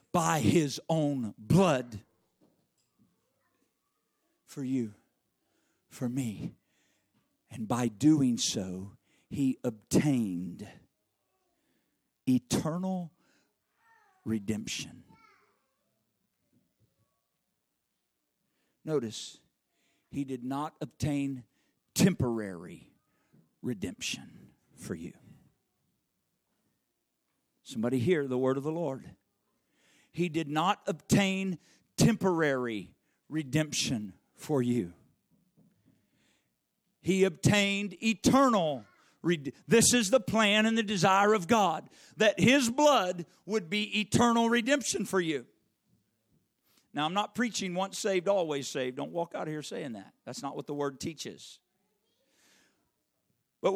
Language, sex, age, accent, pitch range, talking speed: English, male, 50-69, American, 130-215 Hz, 95 wpm